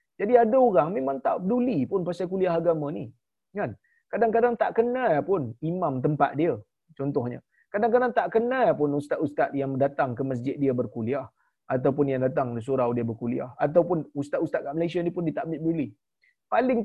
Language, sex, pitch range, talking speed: Malayalam, male, 160-210 Hz, 170 wpm